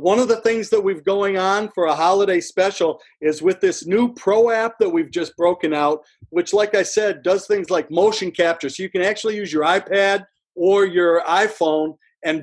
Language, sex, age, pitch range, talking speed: English, male, 50-69, 170-225 Hz, 210 wpm